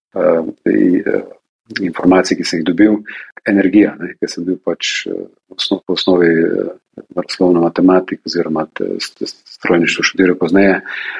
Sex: male